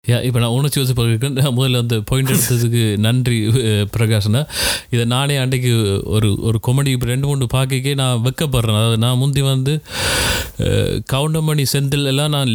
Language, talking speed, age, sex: Tamil, 155 wpm, 30-49, male